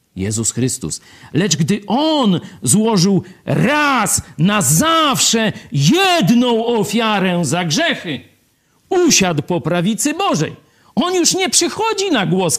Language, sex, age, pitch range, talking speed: Polish, male, 50-69, 140-225 Hz, 110 wpm